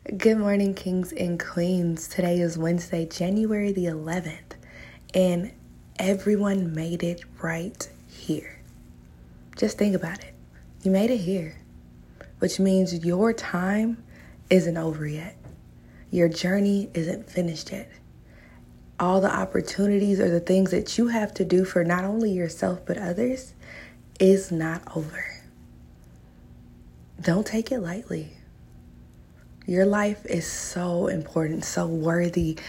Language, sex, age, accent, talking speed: English, female, 20-39, American, 125 wpm